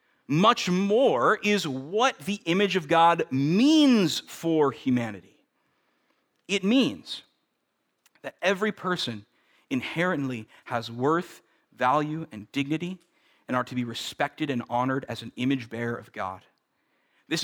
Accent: American